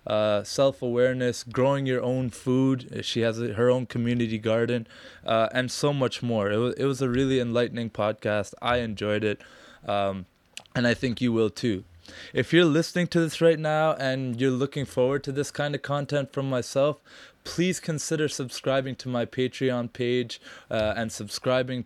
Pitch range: 115-130 Hz